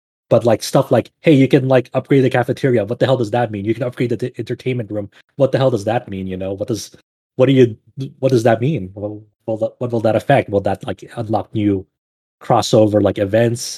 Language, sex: English, male